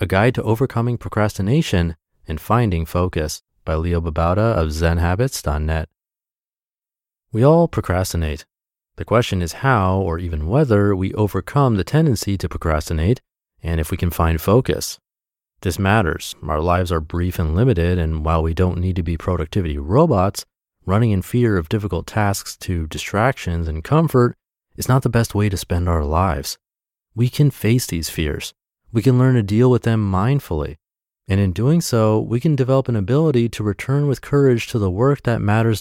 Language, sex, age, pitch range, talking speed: English, male, 30-49, 85-115 Hz, 170 wpm